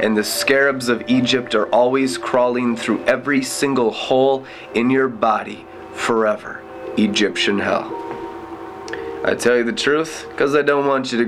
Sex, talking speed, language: male, 155 wpm, English